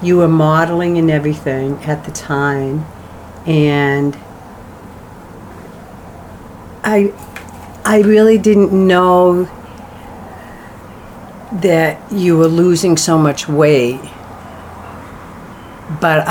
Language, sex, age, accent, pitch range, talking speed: English, female, 50-69, American, 120-155 Hz, 80 wpm